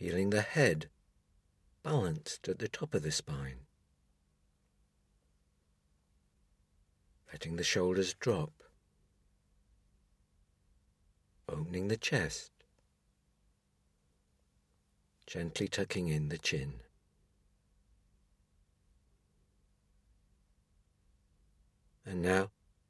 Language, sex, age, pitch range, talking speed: English, male, 60-79, 75-100 Hz, 65 wpm